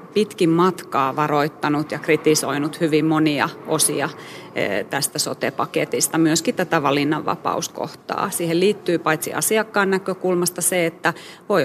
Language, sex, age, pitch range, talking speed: Finnish, female, 30-49, 155-185 Hz, 115 wpm